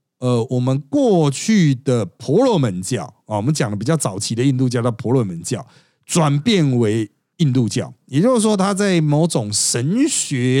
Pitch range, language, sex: 125-175 Hz, Chinese, male